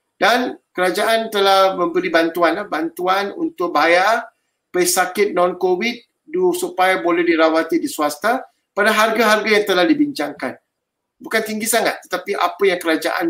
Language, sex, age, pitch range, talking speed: Malay, male, 50-69, 170-230 Hz, 120 wpm